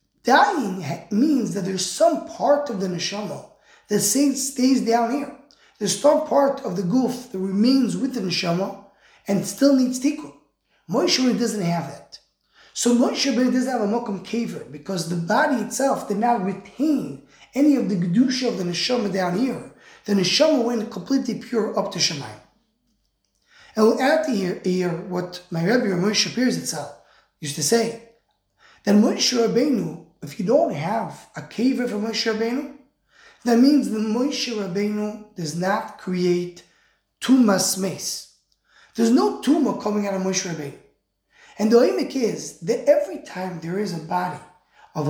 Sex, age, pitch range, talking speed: male, 20-39, 190-255 Hz, 160 wpm